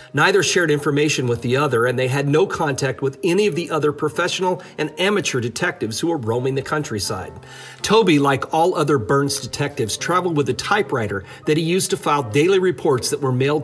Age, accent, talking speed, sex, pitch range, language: 40-59, American, 200 wpm, male, 120-165 Hz, English